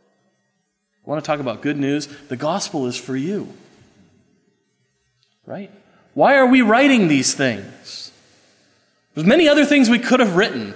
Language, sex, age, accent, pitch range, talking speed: English, male, 30-49, American, 145-235 Hz, 150 wpm